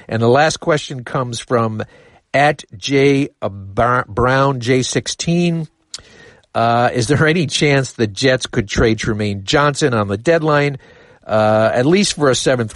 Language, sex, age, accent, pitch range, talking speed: English, male, 50-69, American, 105-130 Hz, 145 wpm